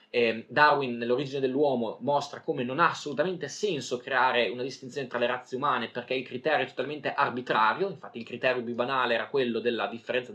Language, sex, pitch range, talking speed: Italian, male, 120-165 Hz, 180 wpm